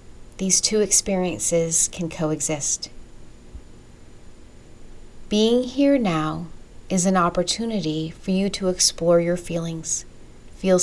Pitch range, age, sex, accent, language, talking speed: 160-190 Hz, 40-59, female, American, English, 100 wpm